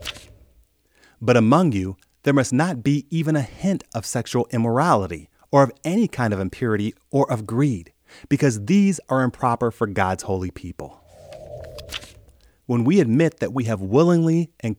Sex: male